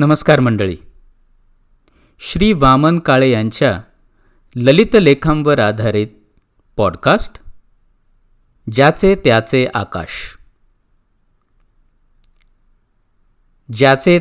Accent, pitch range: native, 100-140 Hz